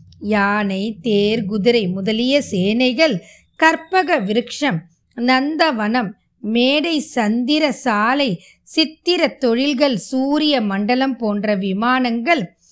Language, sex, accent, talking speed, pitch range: Tamil, female, native, 45 wpm, 220-285 Hz